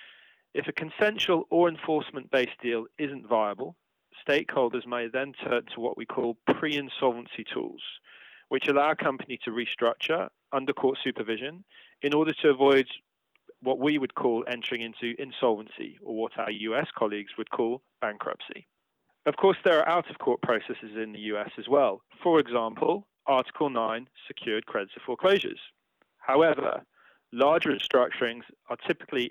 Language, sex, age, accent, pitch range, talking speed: English, male, 30-49, British, 120-155 Hz, 145 wpm